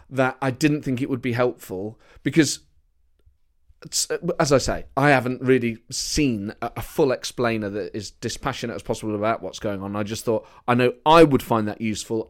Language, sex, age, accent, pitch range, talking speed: English, male, 30-49, British, 110-160 Hz, 190 wpm